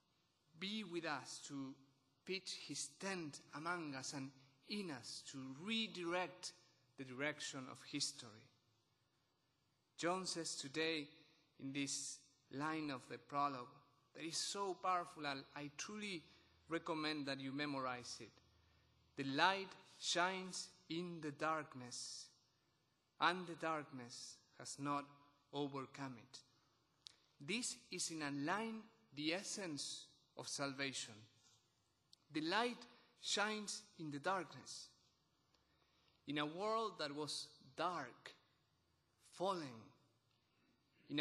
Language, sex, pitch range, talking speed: English, male, 135-170 Hz, 110 wpm